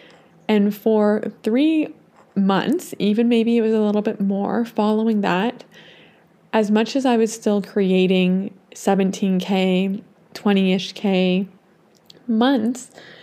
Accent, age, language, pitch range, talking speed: American, 20-39, English, 195-220 Hz, 115 wpm